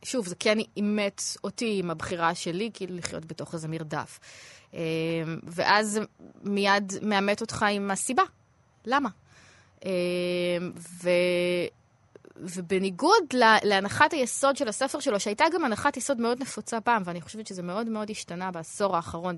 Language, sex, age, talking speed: Hebrew, female, 20-39, 135 wpm